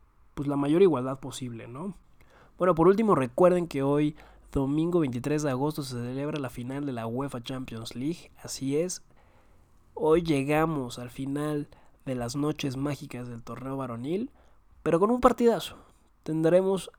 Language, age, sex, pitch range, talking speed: Spanish, 20-39, male, 125-155 Hz, 150 wpm